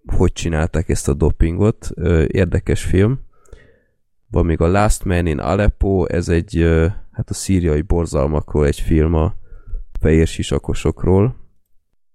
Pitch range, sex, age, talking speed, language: 80-95 Hz, male, 20-39, 125 wpm, Hungarian